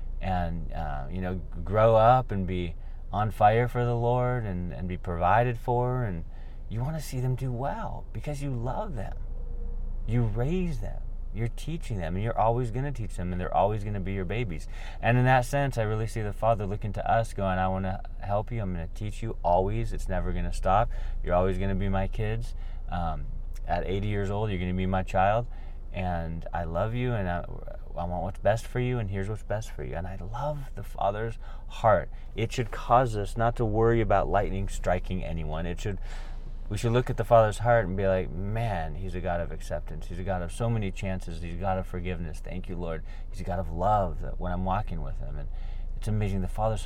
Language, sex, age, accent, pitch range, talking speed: English, male, 30-49, American, 85-110 Hz, 225 wpm